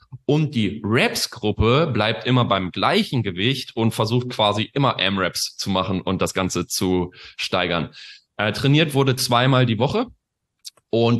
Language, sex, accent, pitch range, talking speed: German, male, German, 100-130 Hz, 145 wpm